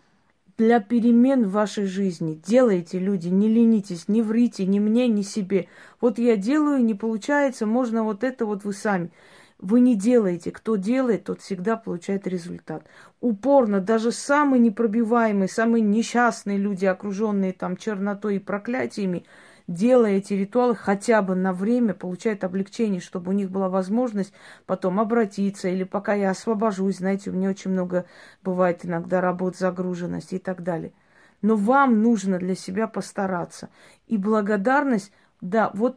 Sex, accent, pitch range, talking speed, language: female, native, 190-235 Hz, 150 wpm, Russian